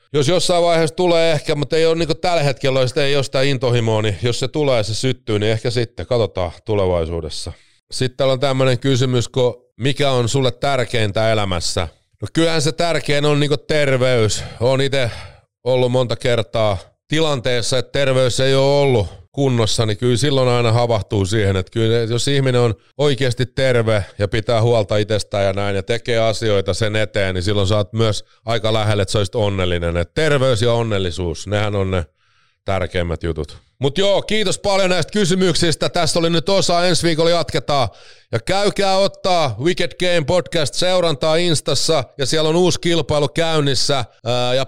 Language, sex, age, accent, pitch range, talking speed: Finnish, male, 30-49, native, 110-155 Hz, 170 wpm